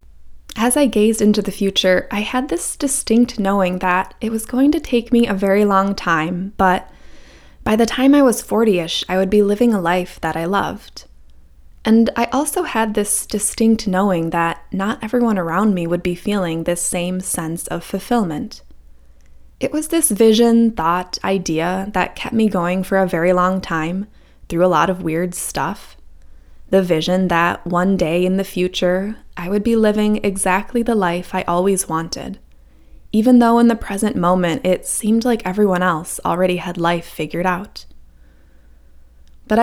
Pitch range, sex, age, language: 170-215 Hz, female, 10-29, English